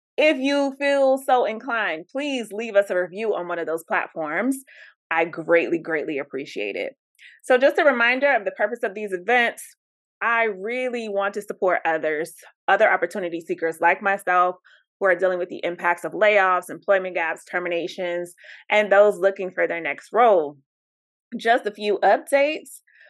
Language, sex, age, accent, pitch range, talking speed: English, female, 20-39, American, 170-215 Hz, 165 wpm